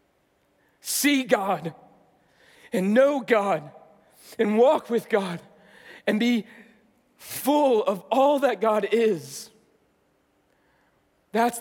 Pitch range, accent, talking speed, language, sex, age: 155-220 Hz, American, 95 wpm, English, male, 40-59